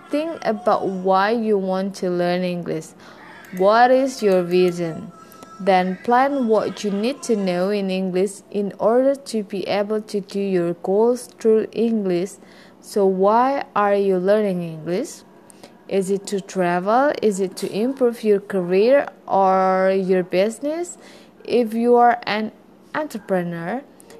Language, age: English, 20-39